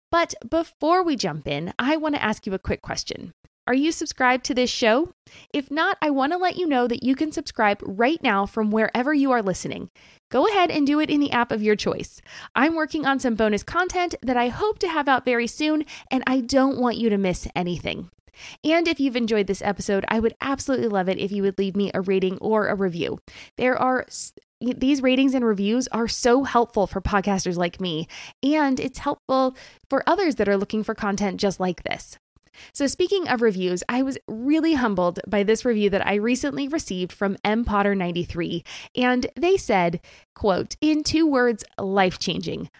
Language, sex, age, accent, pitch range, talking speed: English, female, 20-39, American, 200-285 Hz, 205 wpm